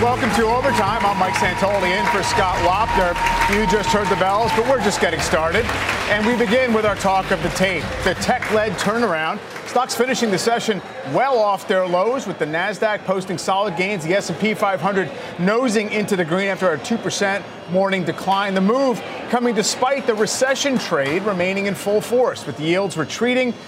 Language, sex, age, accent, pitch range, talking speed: English, male, 30-49, American, 180-220 Hz, 180 wpm